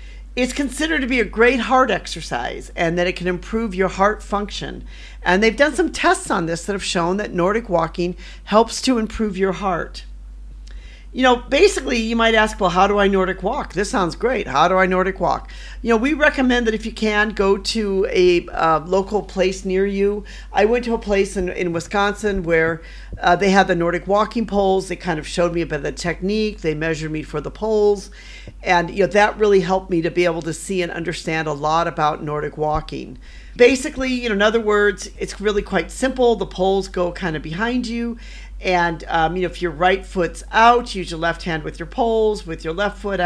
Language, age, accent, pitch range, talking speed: English, 50-69, American, 170-220 Hz, 220 wpm